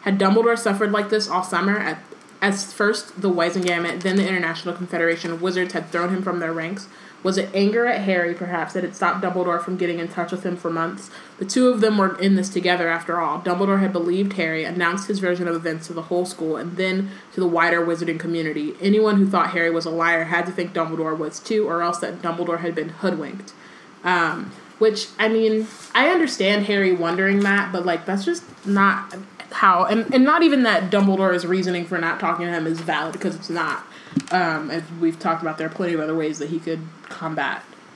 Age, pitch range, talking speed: 30-49, 165-200 Hz, 220 wpm